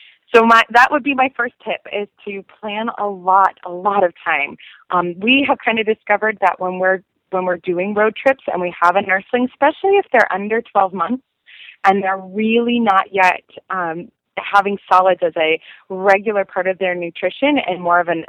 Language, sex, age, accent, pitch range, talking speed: English, female, 20-39, American, 185-230 Hz, 200 wpm